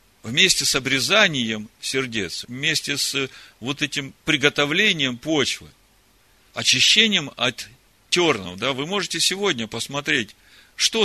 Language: Russian